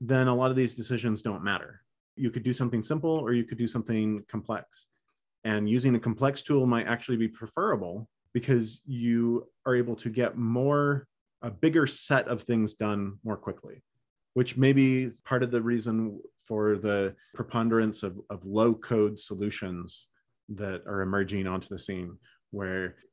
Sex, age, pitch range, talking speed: male, 30-49, 110-135 Hz, 170 wpm